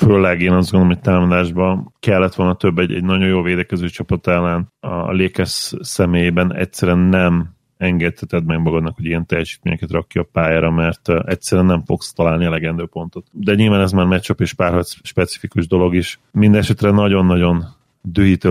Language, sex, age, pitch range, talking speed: Hungarian, male, 30-49, 85-95 Hz, 165 wpm